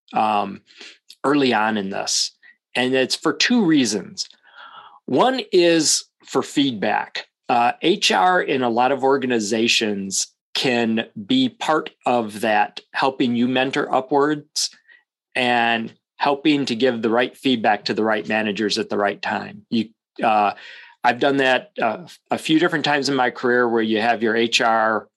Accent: American